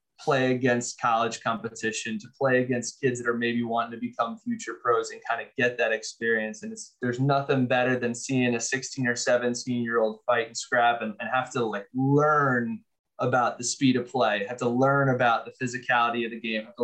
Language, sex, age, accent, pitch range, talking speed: English, male, 20-39, American, 120-135 Hz, 210 wpm